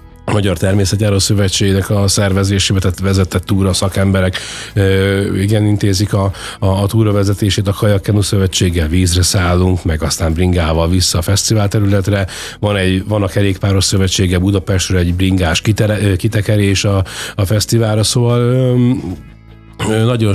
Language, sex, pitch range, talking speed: Hungarian, male, 95-115 Hz, 135 wpm